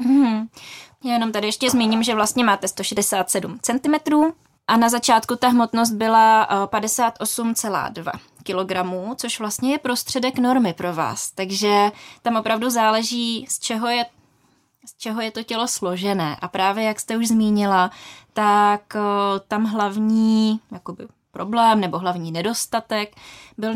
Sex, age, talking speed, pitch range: female, 20-39, 130 wpm, 195-230 Hz